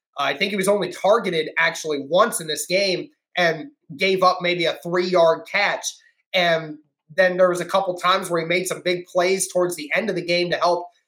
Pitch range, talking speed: 165-205 Hz, 210 wpm